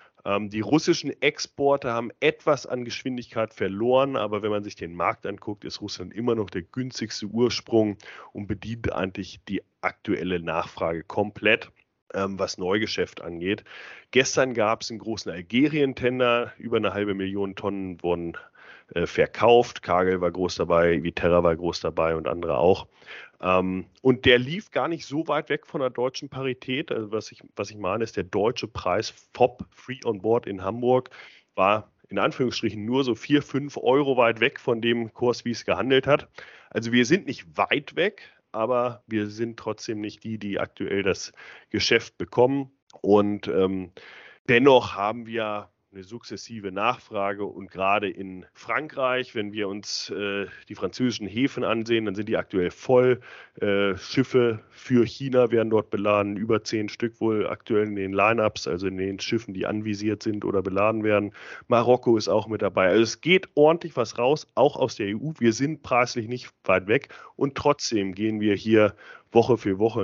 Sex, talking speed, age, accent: male, 170 wpm, 30-49, German